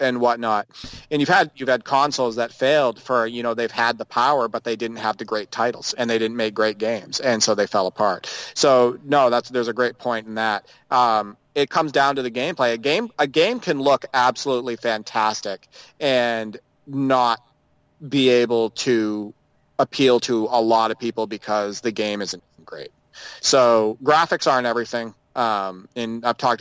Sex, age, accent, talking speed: male, 30-49, American, 185 wpm